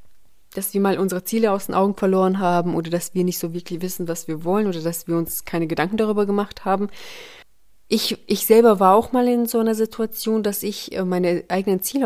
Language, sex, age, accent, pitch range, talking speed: German, female, 30-49, German, 180-220 Hz, 220 wpm